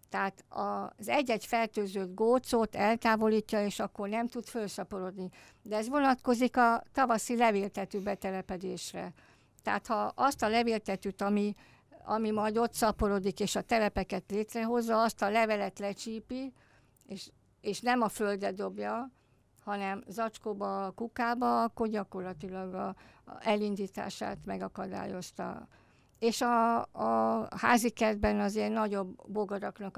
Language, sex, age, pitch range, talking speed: Hungarian, female, 60-79, 195-225 Hz, 120 wpm